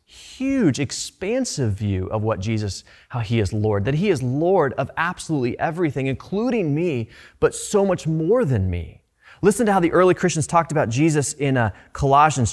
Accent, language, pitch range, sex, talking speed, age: American, English, 115-160 Hz, male, 175 wpm, 20-39